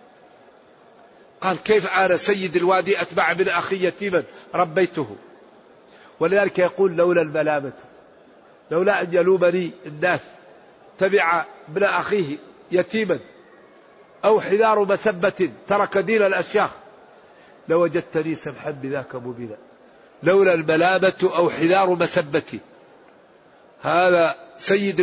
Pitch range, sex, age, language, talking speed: 160-200 Hz, male, 50-69, Arabic, 95 wpm